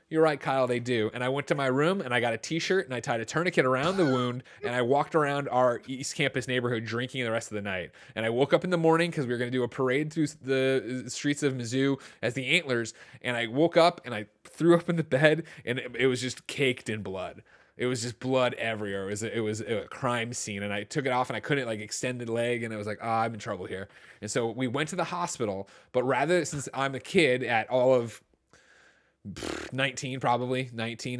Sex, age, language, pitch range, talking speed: male, 20-39, English, 115-140 Hz, 250 wpm